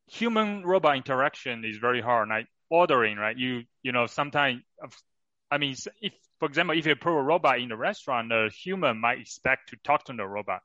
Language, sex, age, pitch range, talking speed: English, male, 30-49, 115-145 Hz, 195 wpm